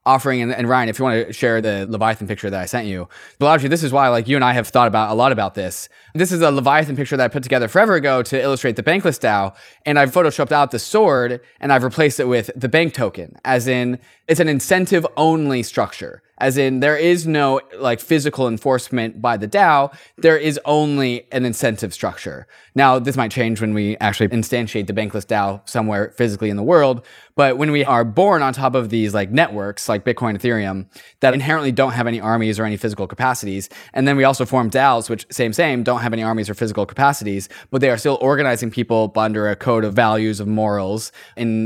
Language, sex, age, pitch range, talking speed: English, male, 20-39, 110-140 Hz, 225 wpm